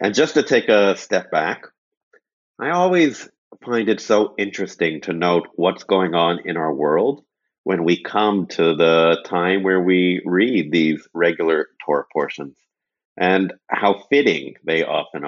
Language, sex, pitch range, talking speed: English, male, 85-120 Hz, 155 wpm